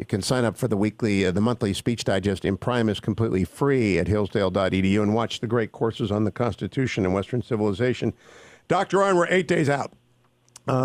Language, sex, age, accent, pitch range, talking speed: English, male, 50-69, American, 120-160 Hz, 205 wpm